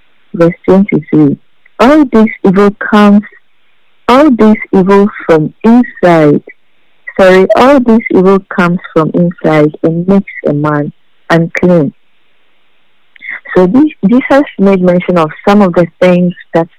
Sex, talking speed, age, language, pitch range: female, 120 wpm, 50-69, English, 165-205 Hz